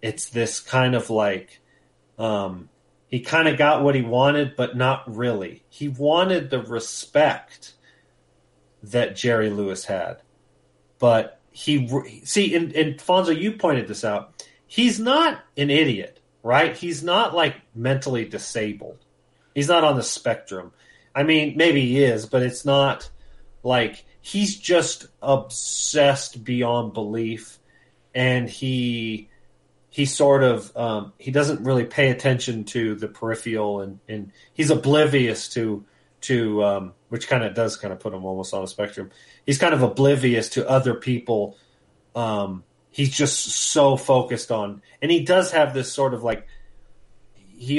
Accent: American